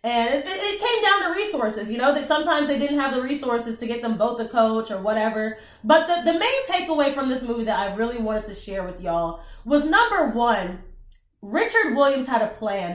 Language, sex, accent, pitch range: English, female, American, 220-290 Hz